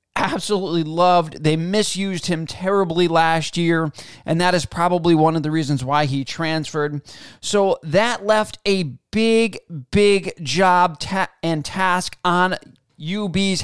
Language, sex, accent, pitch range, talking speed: English, male, American, 155-195 Hz, 135 wpm